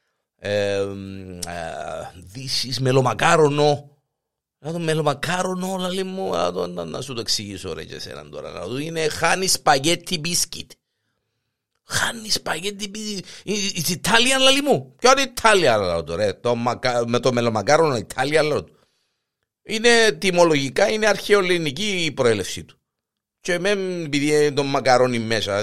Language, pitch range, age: Greek, 115-175 Hz, 50-69